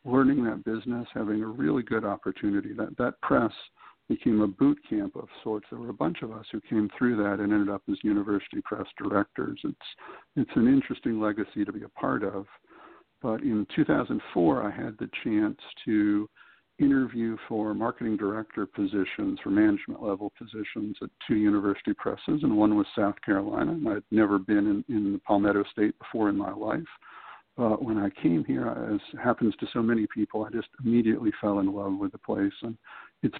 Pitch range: 105-120 Hz